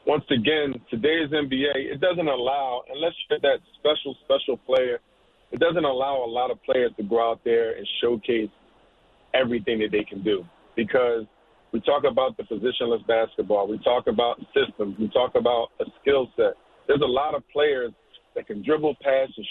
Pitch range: 120-145 Hz